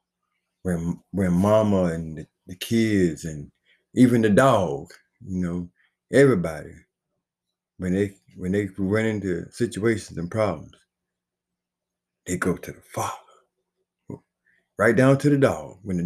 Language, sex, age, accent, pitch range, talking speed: English, male, 60-79, American, 85-115 Hz, 130 wpm